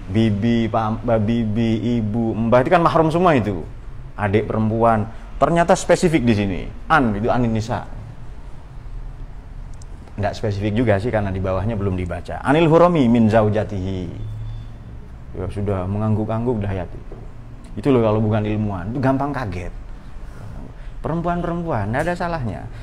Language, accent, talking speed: Indonesian, native, 125 wpm